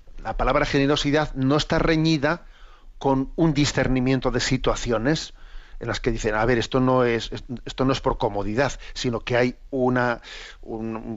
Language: Spanish